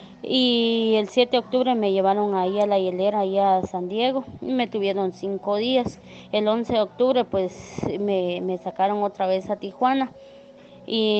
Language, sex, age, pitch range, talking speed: English, female, 20-39, 190-225 Hz, 175 wpm